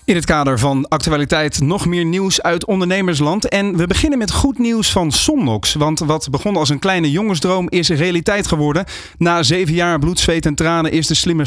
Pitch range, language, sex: 150-190 Hz, Dutch, male